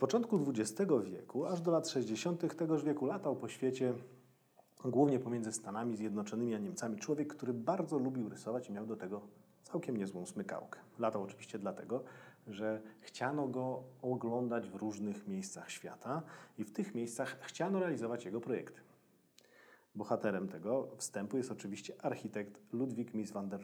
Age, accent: 40-59, native